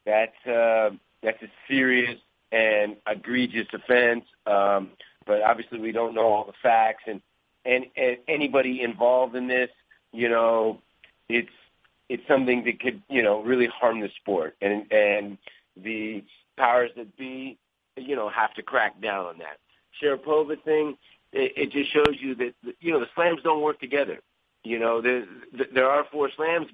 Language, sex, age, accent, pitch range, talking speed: English, male, 40-59, American, 115-135 Hz, 165 wpm